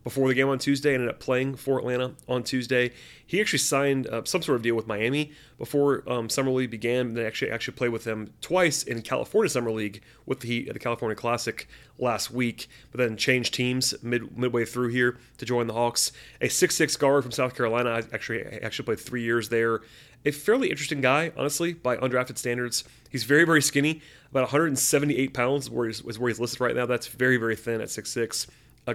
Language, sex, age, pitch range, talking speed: English, male, 30-49, 115-135 Hz, 215 wpm